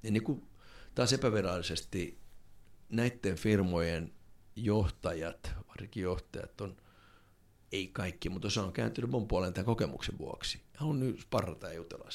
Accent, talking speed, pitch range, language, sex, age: native, 125 wpm, 90-110 Hz, Finnish, male, 60-79